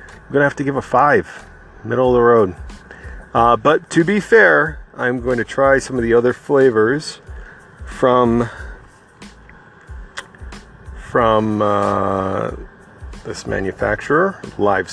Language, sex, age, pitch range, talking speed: English, male, 40-59, 110-145 Hz, 130 wpm